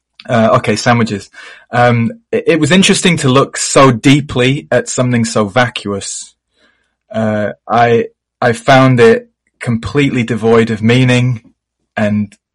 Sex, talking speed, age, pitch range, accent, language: male, 125 wpm, 20-39, 110-125 Hz, British, English